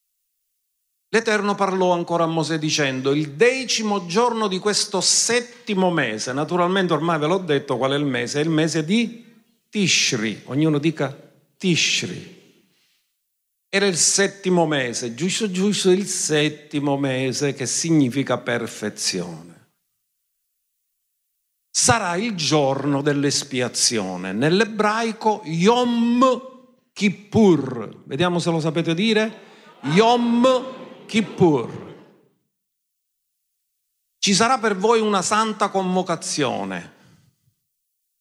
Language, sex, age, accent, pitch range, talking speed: Italian, male, 50-69, native, 140-210 Hz, 100 wpm